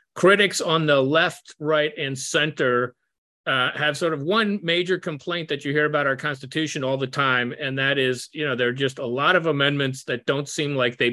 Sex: male